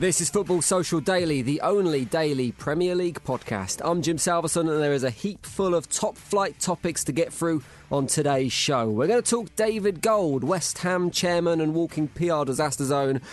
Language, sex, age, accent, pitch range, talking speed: English, male, 20-39, British, 125-175 Hz, 200 wpm